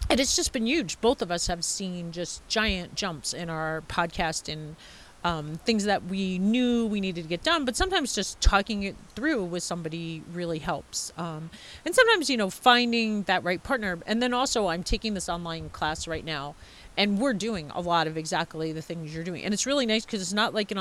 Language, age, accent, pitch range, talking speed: English, 40-59, American, 160-205 Hz, 220 wpm